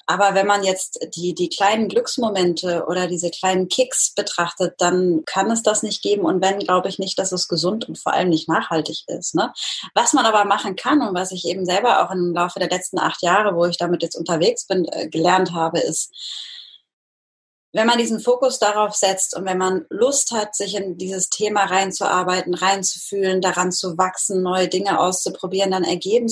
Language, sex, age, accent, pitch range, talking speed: German, female, 20-39, German, 180-215 Hz, 195 wpm